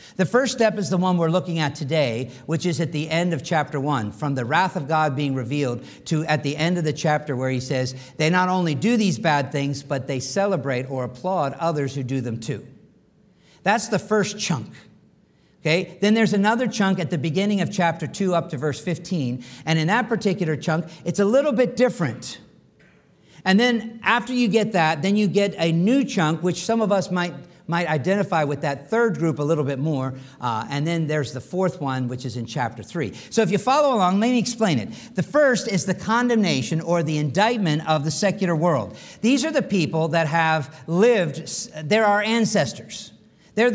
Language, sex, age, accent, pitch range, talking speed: English, male, 50-69, American, 150-200 Hz, 210 wpm